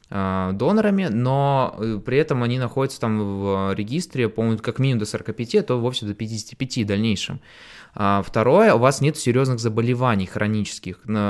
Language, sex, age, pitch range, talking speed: Russian, male, 20-39, 105-135 Hz, 150 wpm